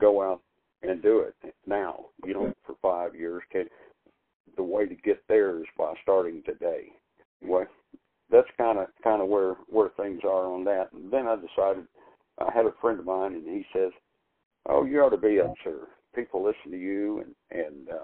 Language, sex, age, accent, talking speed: English, male, 60-79, American, 185 wpm